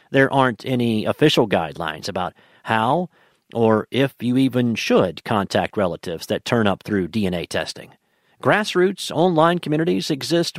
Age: 50-69